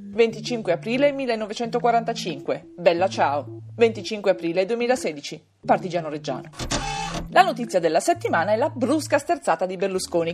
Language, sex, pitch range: Italian, female, 170-255 Hz